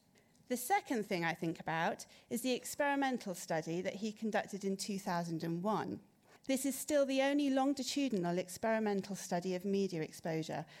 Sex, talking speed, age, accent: female, 145 wpm, 40-59, British